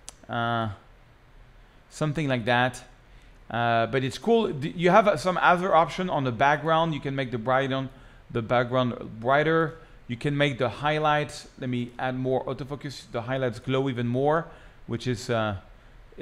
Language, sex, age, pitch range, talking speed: English, male, 40-59, 125-165 Hz, 165 wpm